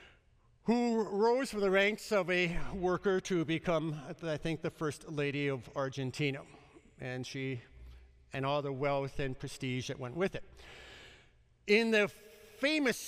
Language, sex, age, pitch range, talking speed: English, male, 50-69, 135-195 Hz, 145 wpm